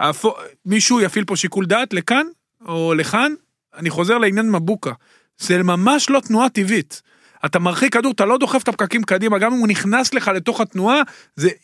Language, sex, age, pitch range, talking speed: Hebrew, male, 40-59, 160-220 Hz, 175 wpm